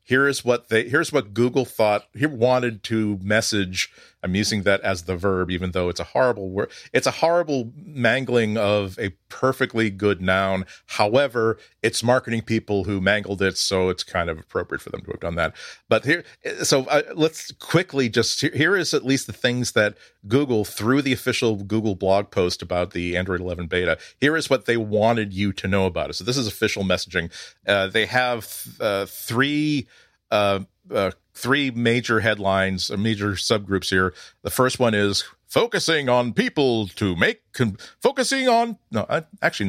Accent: American